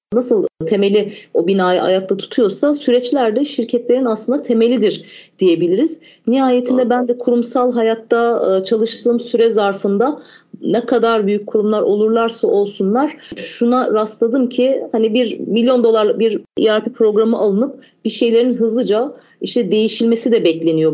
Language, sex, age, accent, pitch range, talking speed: Turkish, female, 40-59, native, 205-250 Hz, 125 wpm